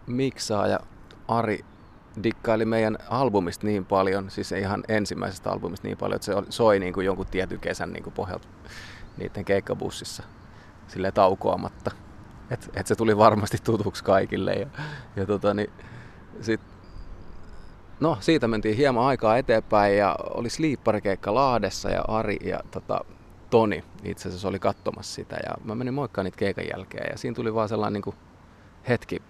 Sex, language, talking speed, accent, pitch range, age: male, Finnish, 155 wpm, native, 95-115 Hz, 30-49